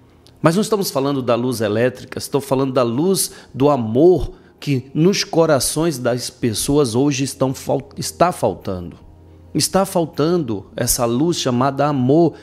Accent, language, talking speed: Brazilian, Portuguese, 135 wpm